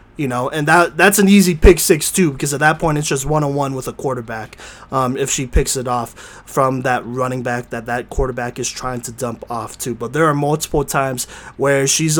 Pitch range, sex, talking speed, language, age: 130-170 Hz, male, 235 wpm, English, 20-39